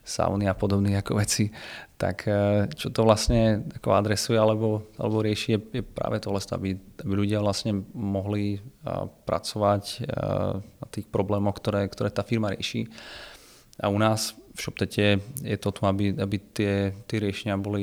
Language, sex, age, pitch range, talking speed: Czech, male, 30-49, 100-110 Hz, 135 wpm